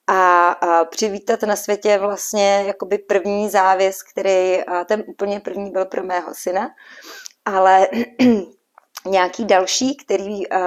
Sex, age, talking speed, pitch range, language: female, 30-49, 110 wpm, 185-210 Hz, Czech